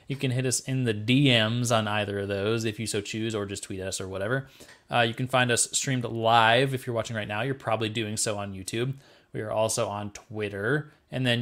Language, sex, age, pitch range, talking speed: English, male, 20-39, 110-135 Hz, 240 wpm